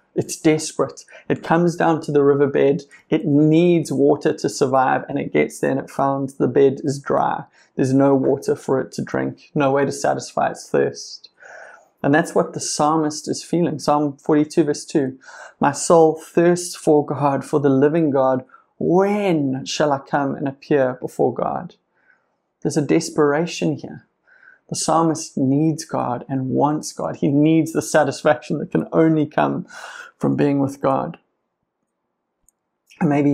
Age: 30-49